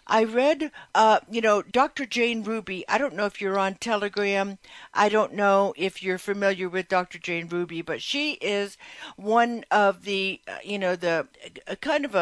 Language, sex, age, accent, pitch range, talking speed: English, female, 60-79, American, 190-230 Hz, 190 wpm